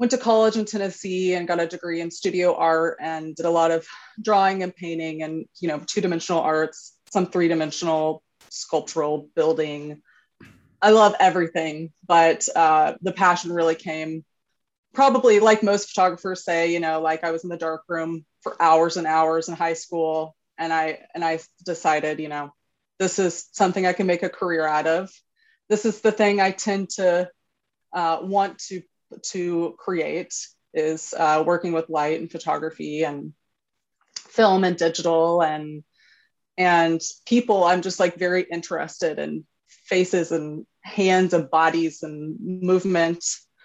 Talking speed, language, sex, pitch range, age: 155 wpm, English, female, 160-185 Hz, 20-39